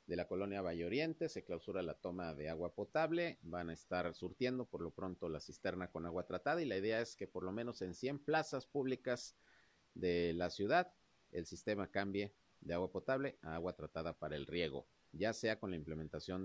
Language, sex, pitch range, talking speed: Spanish, male, 85-115 Hz, 205 wpm